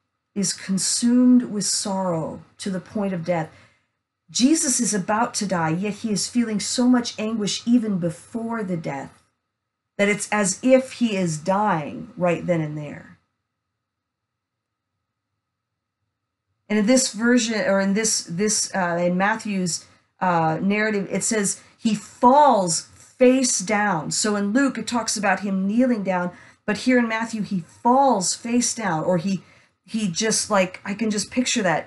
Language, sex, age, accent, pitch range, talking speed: English, female, 40-59, American, 155-220 Hz, 155 wpm